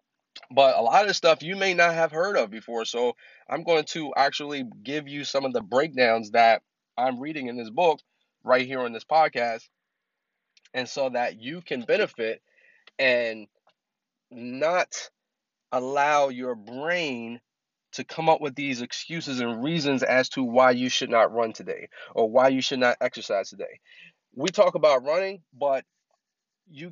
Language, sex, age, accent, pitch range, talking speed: English, male, 30-49, American, 120-160 Hz, 165 wpm